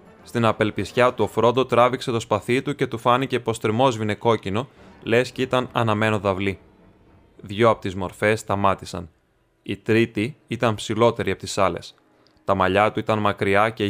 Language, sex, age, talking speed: Greek, male, 20-39, 165 wpm